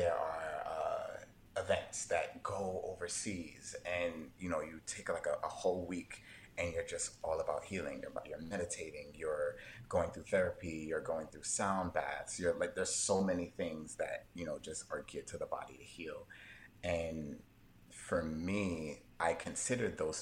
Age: 30-49